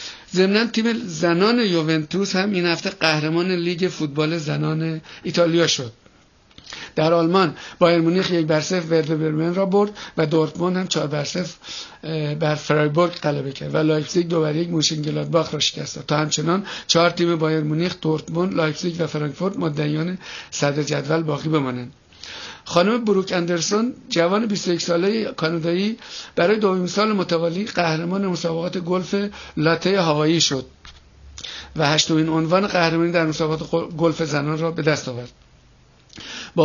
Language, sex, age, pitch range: Persian, male, 50-69, 155-175 Hz